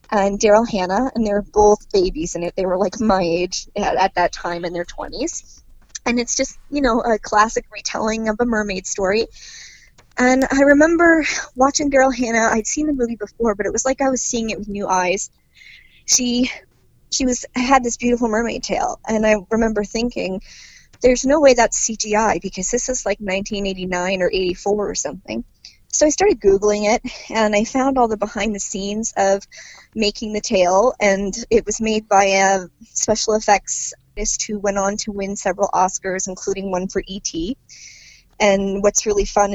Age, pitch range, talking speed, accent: 20-39, 195-235 Hz, 190 wpm, American